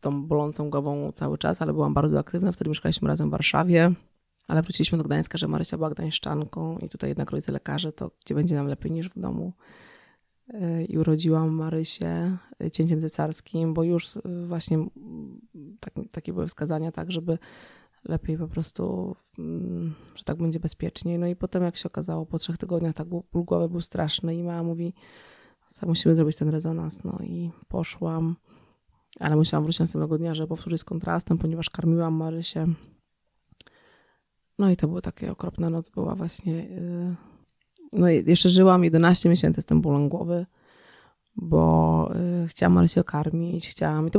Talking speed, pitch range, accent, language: 160 wpm, 155-175 Hz, native, Polish